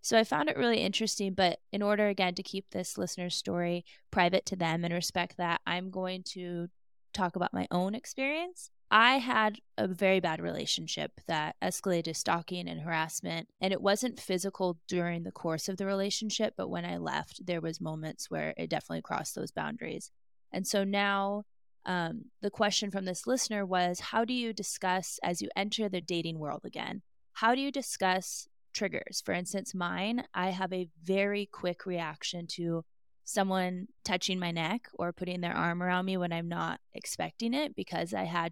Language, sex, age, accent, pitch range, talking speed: English, female, 20-39, American, 175-220 Hz, 180 wpm